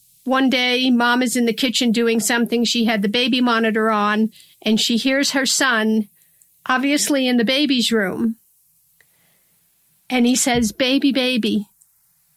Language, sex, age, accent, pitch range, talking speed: English, female, 50-69, American, 200-255 Hz, 145 wpm